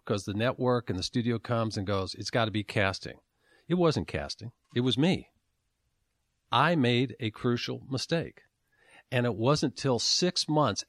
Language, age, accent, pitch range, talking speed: English, 50-69, American, 110-150 Hz, 170 wpm